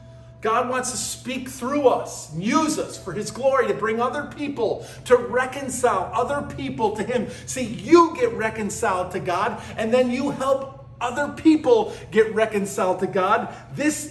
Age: 40-59